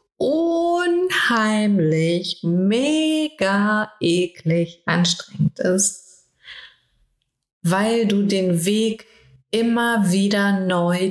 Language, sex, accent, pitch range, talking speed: German, female, German, 170-210 Hz, 65 wpm